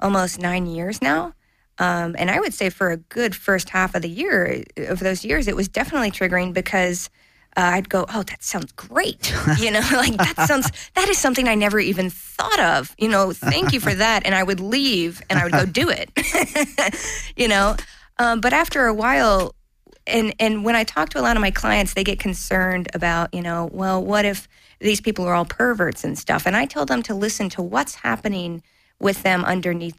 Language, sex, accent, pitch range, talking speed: English, female, American, 165-205 Hz, 215 wpm